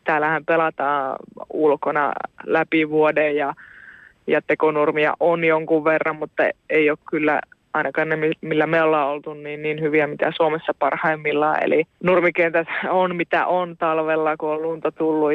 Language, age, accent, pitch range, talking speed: Finnish, 20-39, native, 150-175 Hz, 145 wpm